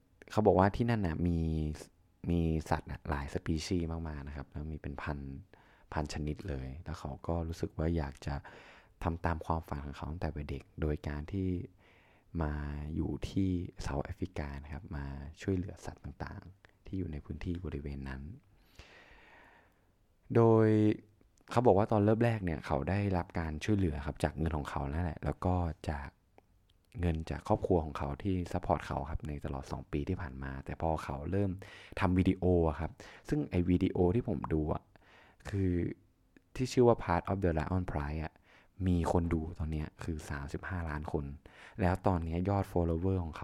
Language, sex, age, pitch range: Thai, male, 20-39, 75-95 Hz